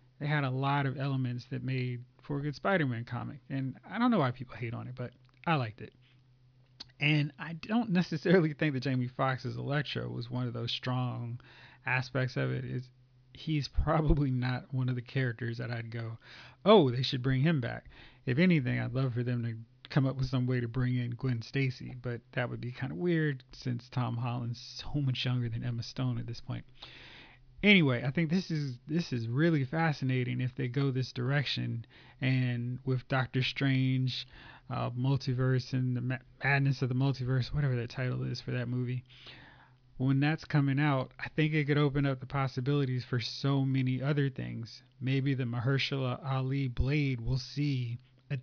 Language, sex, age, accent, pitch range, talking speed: English, male, 30-49, American, 125-140 Hz, 190 wpm